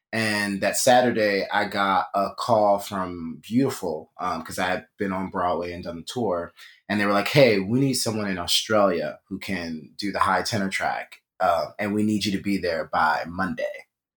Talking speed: 200 wpm